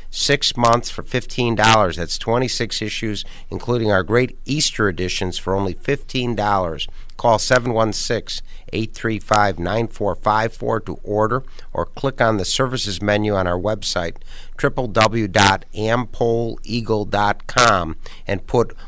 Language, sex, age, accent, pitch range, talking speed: English, male, 60-79, American, 100-120 Hz, 125 wpm